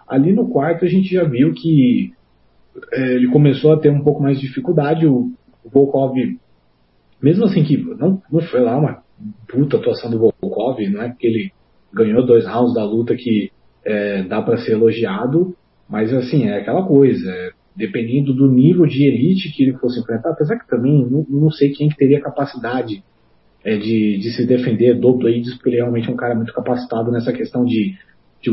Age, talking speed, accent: 30-49, 190 wpm, Brazilian